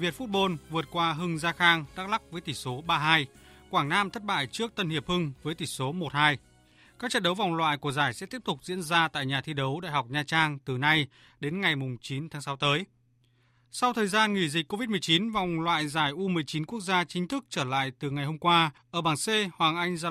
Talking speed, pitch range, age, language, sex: 235 wpm, 145-180 Hz, 20-39, Vietnamese, male